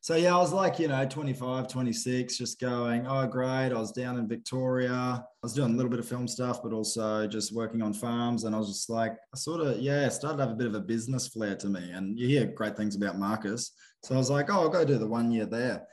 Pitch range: 105-130 Hz